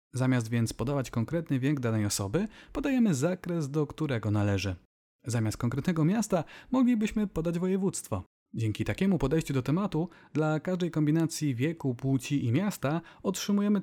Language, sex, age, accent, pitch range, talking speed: Polish, male, 30-49, native, 130-185 Hz, 135 wpm